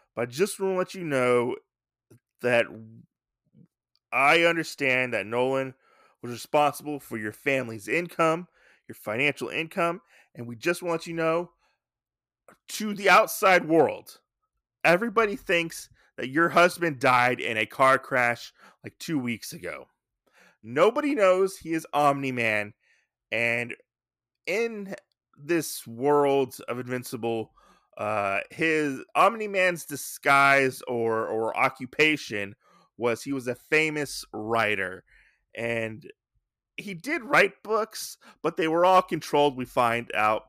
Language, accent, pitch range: English, American, 120-170 Hz